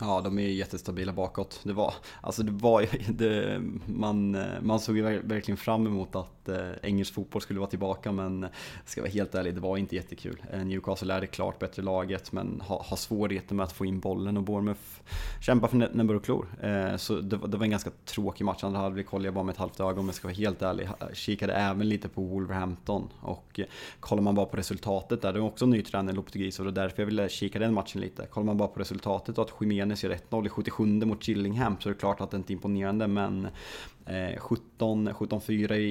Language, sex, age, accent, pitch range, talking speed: Swedish, male, 20-39, Norwegian, 95-110 Hz, 220 wpm